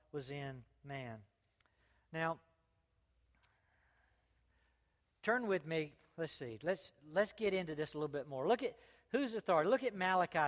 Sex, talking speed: male, 145 wpm